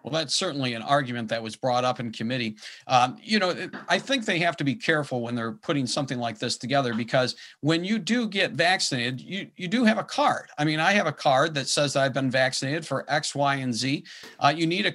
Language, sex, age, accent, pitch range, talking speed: English, male, 50-69, American, 125-165 Hz, 245 wpm